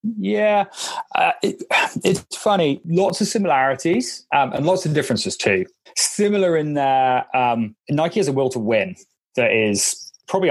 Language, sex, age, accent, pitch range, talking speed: English, male, 30-49, British, 115-145 Hz, 160 wpm